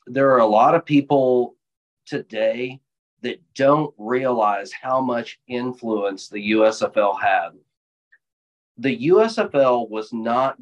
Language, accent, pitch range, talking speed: English, American, 110-145 Hz, 115 wpm